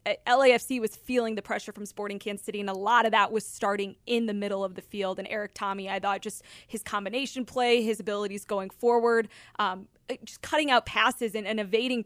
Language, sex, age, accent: English, female, 20-39, American